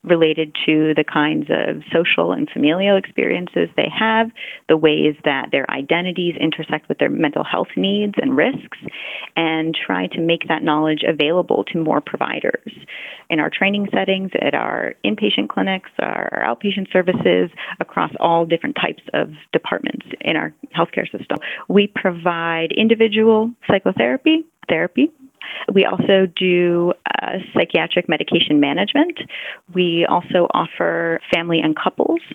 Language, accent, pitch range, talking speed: English, American, 155-200 Hz, 135 wpm